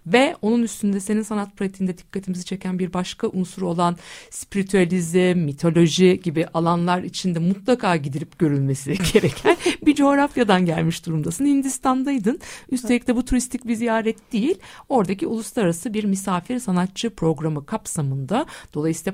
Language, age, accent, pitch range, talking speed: Turkish, 60-79, native, 160-215 Hz, 130 wpm